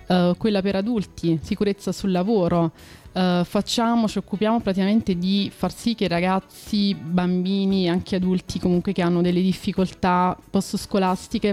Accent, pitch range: native, 175-205 Hz